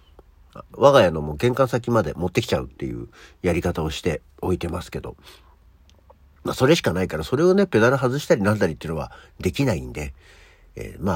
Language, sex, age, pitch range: Japanese, male, 60-79, 80-120 Hz